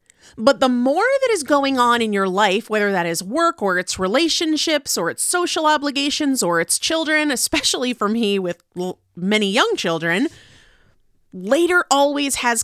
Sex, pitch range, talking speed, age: female, 195-290 Hz, 160 wpm, 30-49